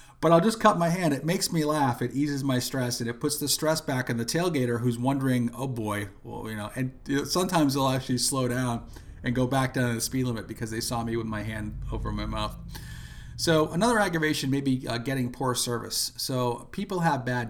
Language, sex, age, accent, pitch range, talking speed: English, male, 40-59, American, 115-140 Hz, 230 wpm